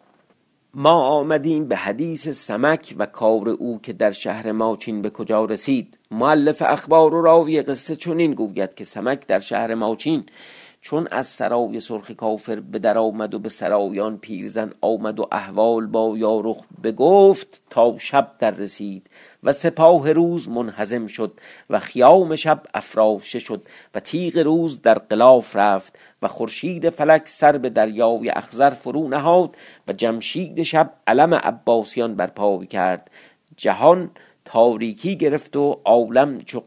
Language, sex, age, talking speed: Persian, male, 50-69, 140 wpm